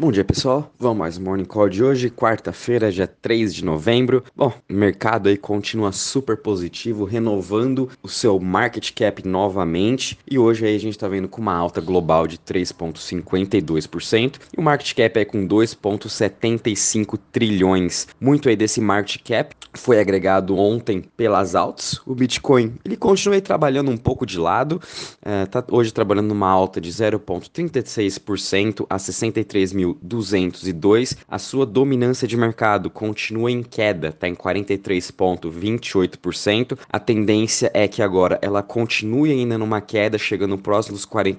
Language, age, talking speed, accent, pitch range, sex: Portuguese, 20-39, 150 wpm, Brazilian, 95-120 Hz, male